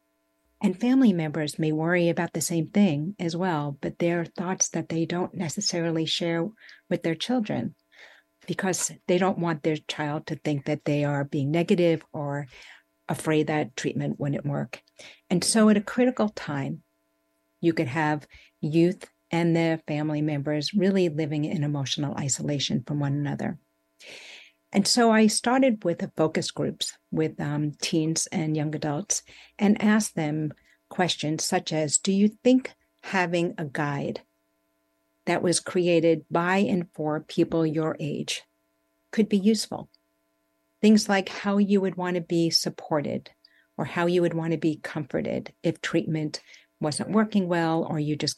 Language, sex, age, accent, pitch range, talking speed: English, female, 60-79, American, 150-180 Hz, 160 wpm